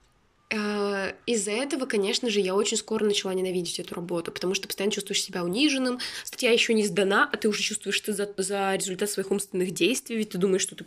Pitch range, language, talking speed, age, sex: 190-225 Hz, Russian, 205 wpm, 20-39, female